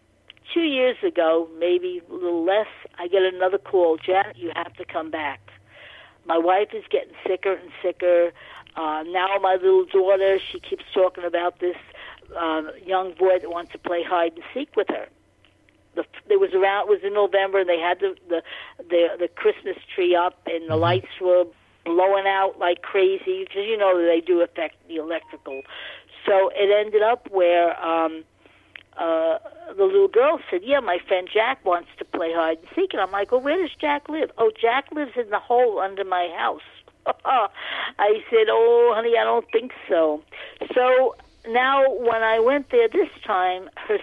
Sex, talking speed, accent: female, 185 wpm, American